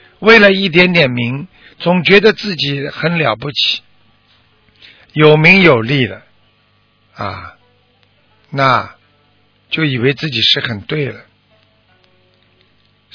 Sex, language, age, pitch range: male, Chinese, 60-79, 110-155 Hz